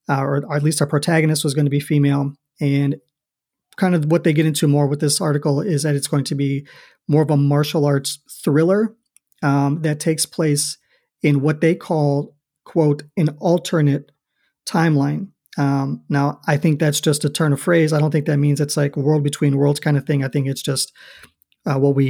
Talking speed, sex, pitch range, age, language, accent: 210 wpm, male, 145-160 Hz, 40-59, English, American